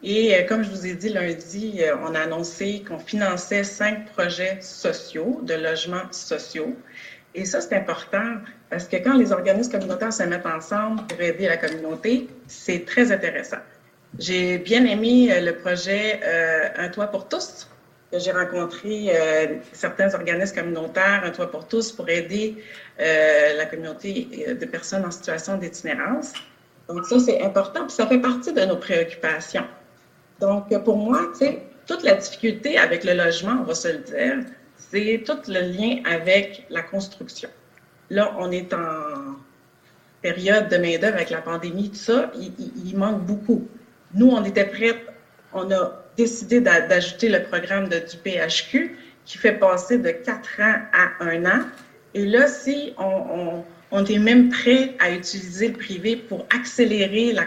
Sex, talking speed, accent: female, 160 wpm, Canadian